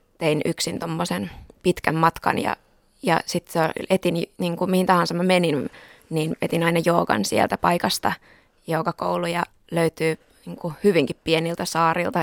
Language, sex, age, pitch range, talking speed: Finnish, female, 20-39, 165-195 Hz, 130 wpm